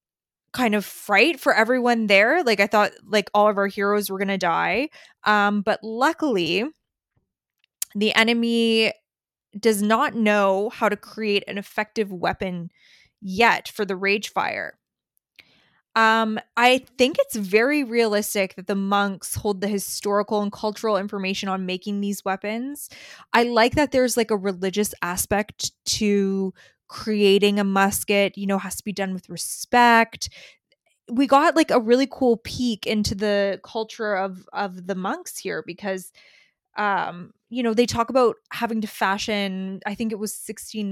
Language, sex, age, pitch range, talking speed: English, female, 20-39, 195-230 Hz, 155 wpm